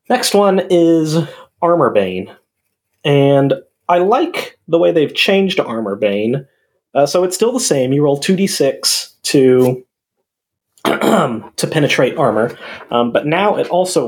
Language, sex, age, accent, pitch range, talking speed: English, male, 30-49, American, 115-160 Hz, 135 wpm